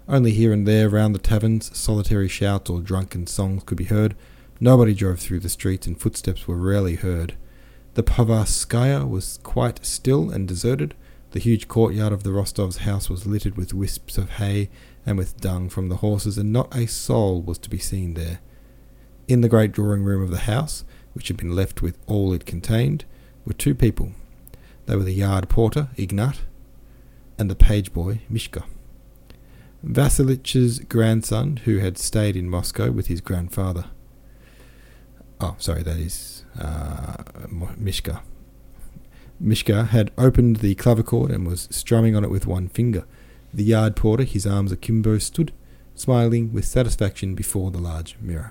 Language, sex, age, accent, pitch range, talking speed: English, male, 40-59, Australian, 95-115 Hz, 160 wpm